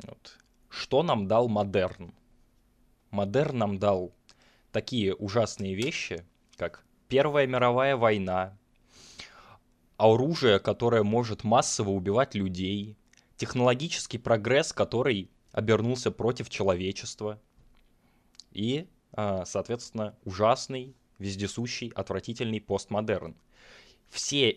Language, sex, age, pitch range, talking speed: Russian, male, 20-39, 100-120 Hz, 80 wpm